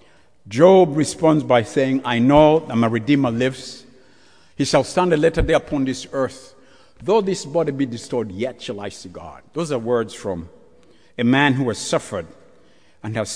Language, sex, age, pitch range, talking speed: English, male, 60-79, 120-175 Hz, 180 wpm